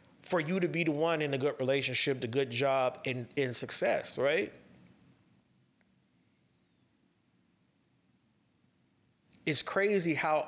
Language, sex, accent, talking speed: English, male, American, 120 wpm